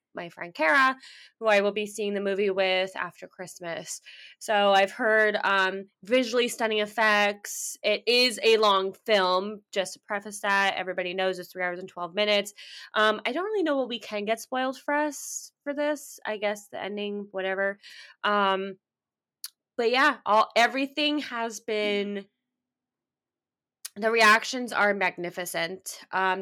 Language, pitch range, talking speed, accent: English, 190-225 Hz, 155 wpm, American